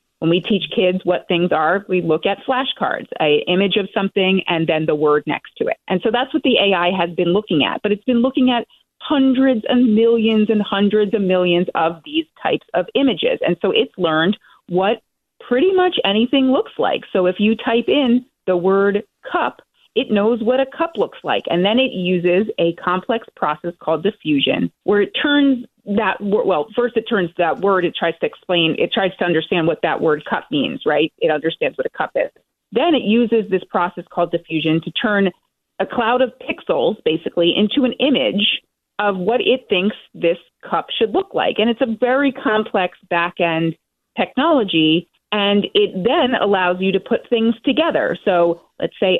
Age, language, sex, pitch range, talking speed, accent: 30-49, English, female, 180-250 Hz, 195 wpm, American